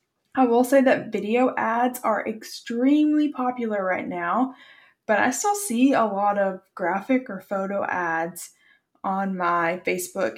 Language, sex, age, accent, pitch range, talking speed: English, female, 20-39, American, 200-265 Hz, 145 wpm